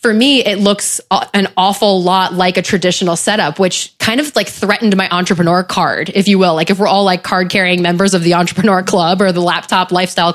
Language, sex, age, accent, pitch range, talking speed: English, female, 20-39, American, 180-210 Hz, 220 wpm